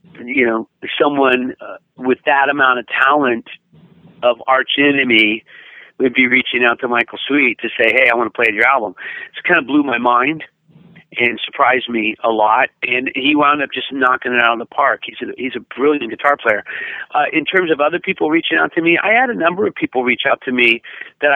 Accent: American